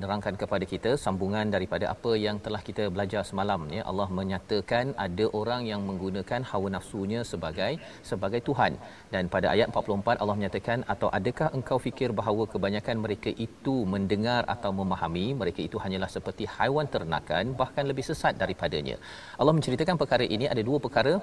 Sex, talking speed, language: male, 160 wpm, Malayalam